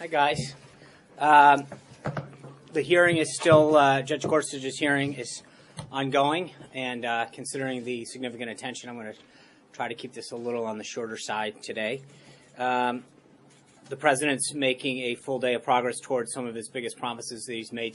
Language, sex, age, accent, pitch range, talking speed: English, male, 30-49, American, 115-135 Hz, 170 wpm